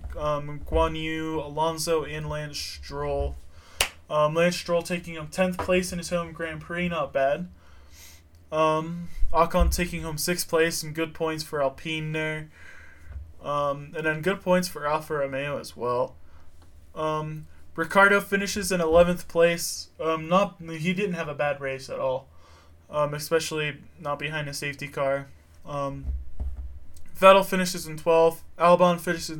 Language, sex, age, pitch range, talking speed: English, male, 20-39, 125-165 Hz, 150 wpm